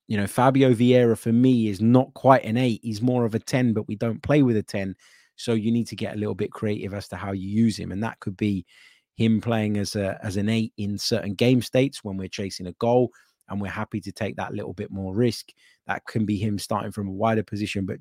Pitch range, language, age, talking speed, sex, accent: 95-115 Hz, English, 20-39, 260 wpm, male, British